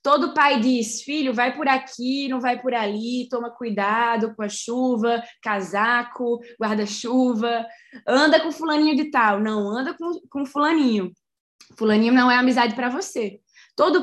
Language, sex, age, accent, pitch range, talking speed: Portuguese, female, 10-29, Brazilian, 225-275 Hz, 150 wpm